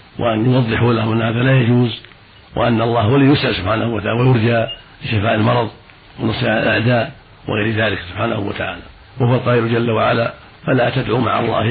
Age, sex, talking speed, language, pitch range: 60-79, male, 155 wpm, Arabic, 110-125 Hz